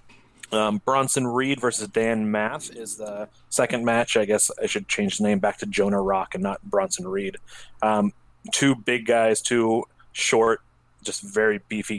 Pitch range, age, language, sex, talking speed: 100-115 Hz, 30-49, English, male, 170 wpm